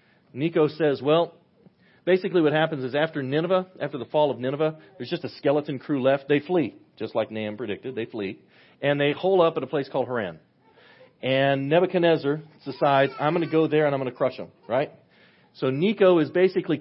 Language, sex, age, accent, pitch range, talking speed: English, male, 40-59, American, 130-160 Hz, 200 wpm